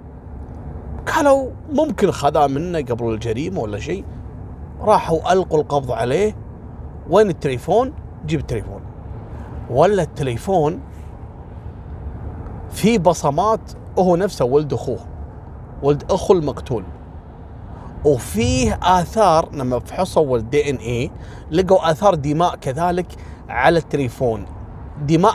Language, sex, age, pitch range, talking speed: Arabic, male, 30-49, 105-170 Hz, 100 wpm